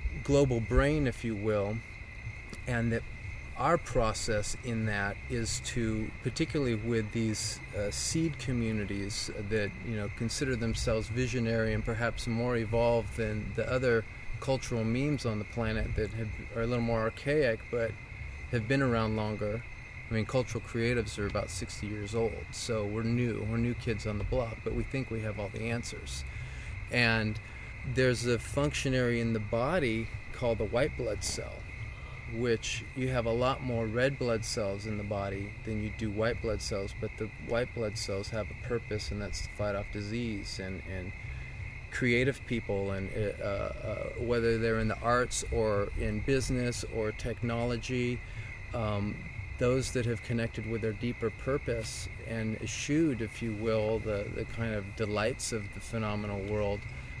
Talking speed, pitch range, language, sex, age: 165 wpm, 105-120 Hz, English, male, 30-49